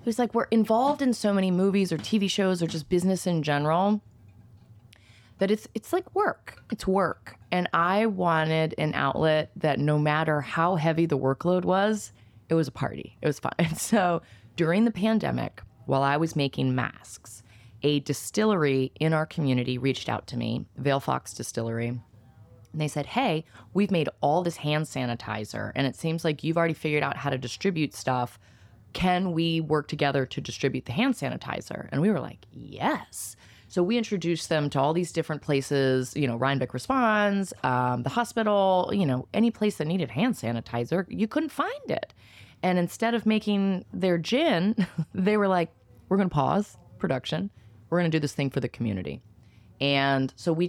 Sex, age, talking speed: female, 20-39, 180 wpm